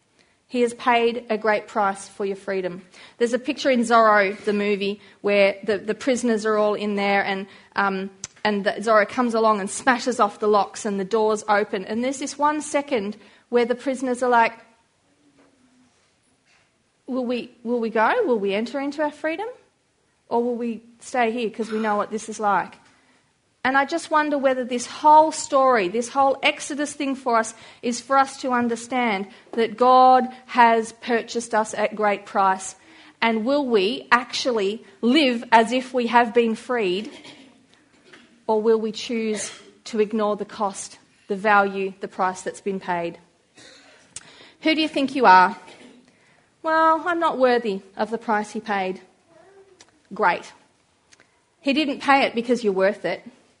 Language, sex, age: English, female, 40-59